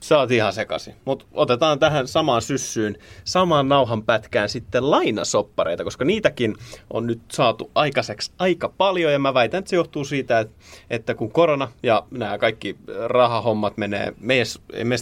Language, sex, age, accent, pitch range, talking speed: Finnish, male, 30-49, native, 110-145 Hz, 145 wpm